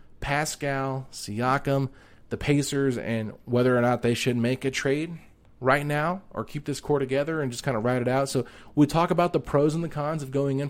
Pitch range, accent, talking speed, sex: 120-155 Hz, American, 220 wpm, male